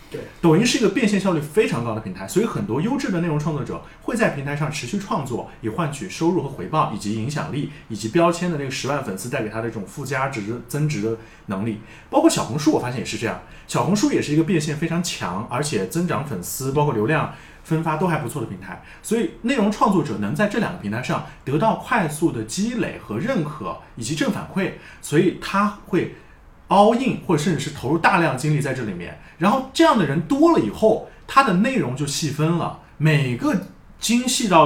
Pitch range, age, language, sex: 135-200 Hz, 30-49, Chinese, male